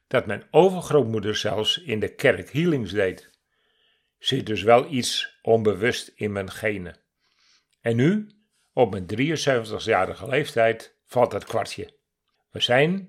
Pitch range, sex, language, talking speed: 100-145 Hz, male, Dutch, 130 wpm